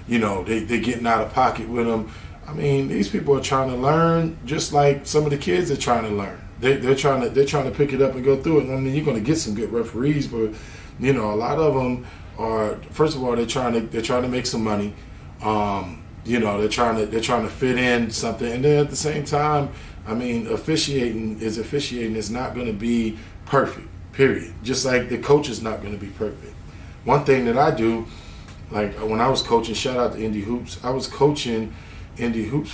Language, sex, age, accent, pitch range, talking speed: English, male, 20-39, American, 110-145 Hz, 240 wpm